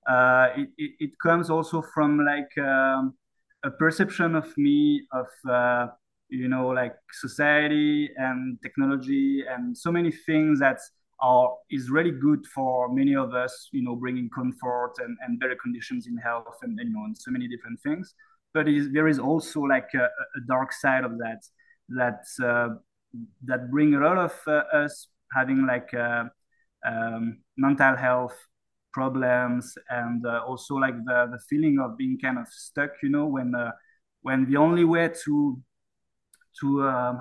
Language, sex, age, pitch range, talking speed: English, male, 20-39, 125-160 Hz, 160 wpm